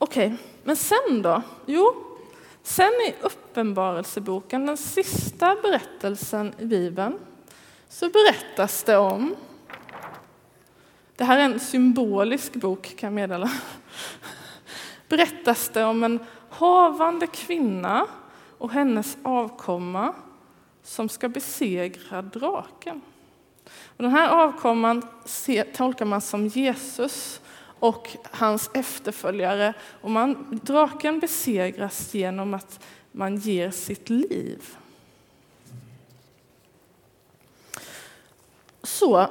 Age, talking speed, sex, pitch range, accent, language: 20-39, 90 wpm, female, 205-310 Hz, native, Swedish